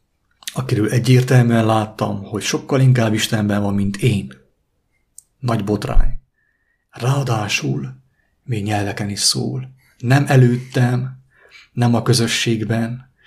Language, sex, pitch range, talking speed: English, male, 110-125 Hz, 100 wpm